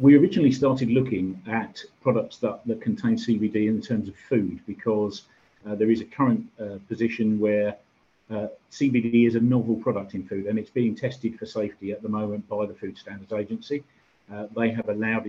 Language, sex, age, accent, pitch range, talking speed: English, male, 50-69, British, 105-120 Hz, 190 wpm